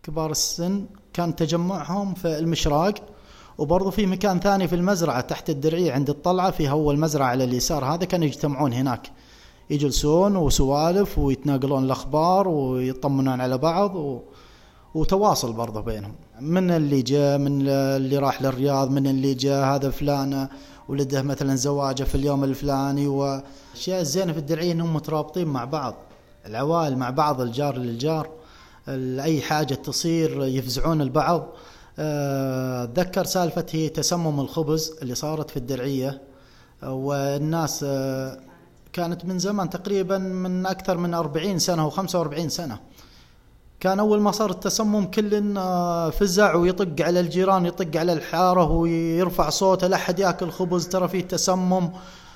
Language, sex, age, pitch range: Arabic, male, 20-39, 140-180 Hz